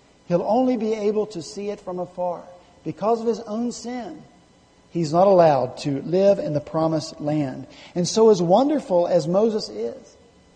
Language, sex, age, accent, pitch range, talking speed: English, male, 50-69, American, 165-225 Hz, 170 wpm